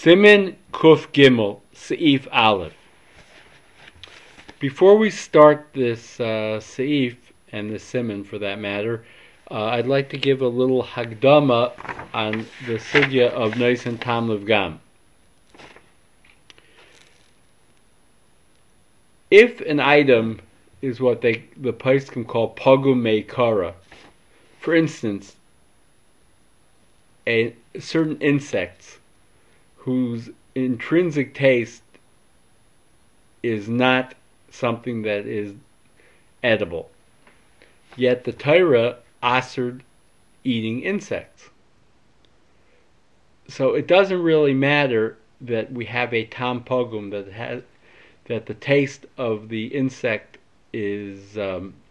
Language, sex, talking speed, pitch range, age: English, male, 95 wpm, 110-135 Hz, 40-59